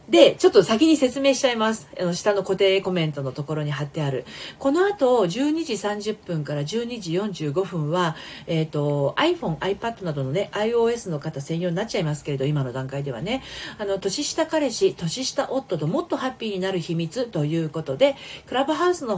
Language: Japanese